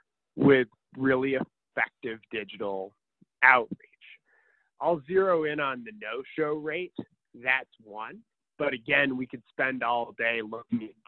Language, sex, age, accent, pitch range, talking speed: English, male, 30-49, American, 120-150 Hz, 120 wpm